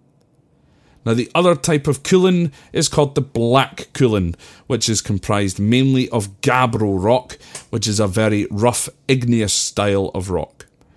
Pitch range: 95-125 Hz